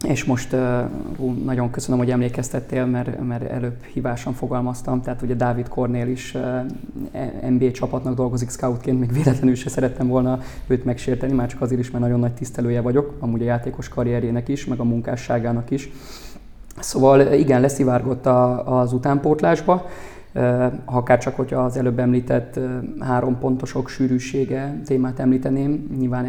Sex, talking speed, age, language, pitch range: male, 140 wpm, 20-39, Hungarian, 125-130 Hz